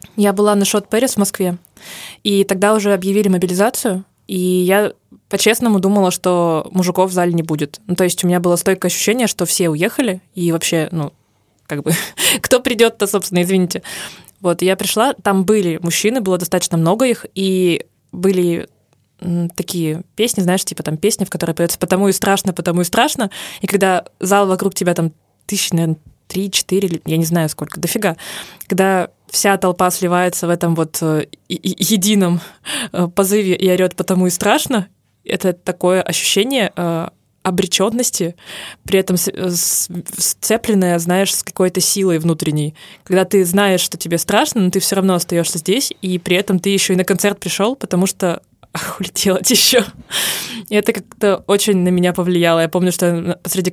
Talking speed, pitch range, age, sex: 160 wpm, 175-200 Hz, 20-39, female